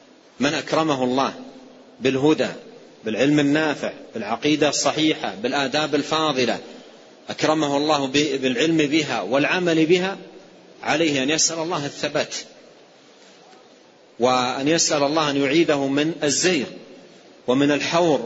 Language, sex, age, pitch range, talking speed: Arabic, male, 40-59, 125-160 Hz, 100 wpm